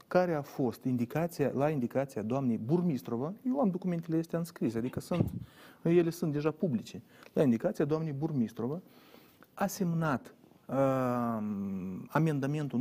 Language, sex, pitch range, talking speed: Romanian, male, 125-185 Hz, 125 wpm